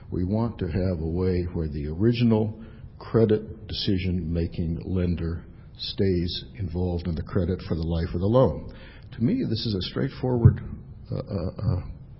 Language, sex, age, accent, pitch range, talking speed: English, male, 60-79, American, 90-115 Hz, 150 wpm